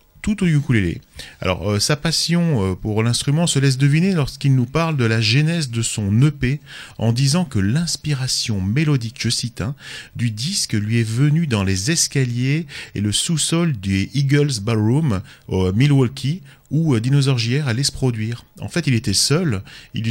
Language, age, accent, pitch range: French, 40-59, French, 110-150 Hz